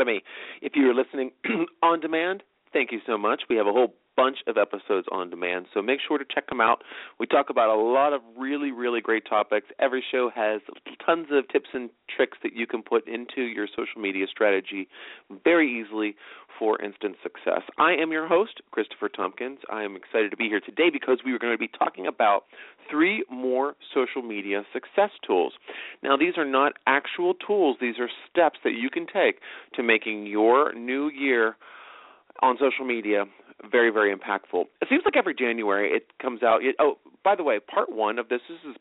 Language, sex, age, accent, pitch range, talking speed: English, male, 40-59, American, 110-150 Hz, 200 wpm